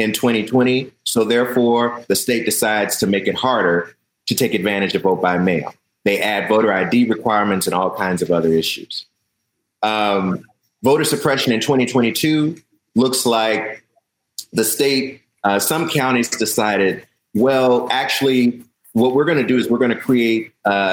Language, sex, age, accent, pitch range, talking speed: English, male, 30-49, American, 90-110 Hz, 160 wpm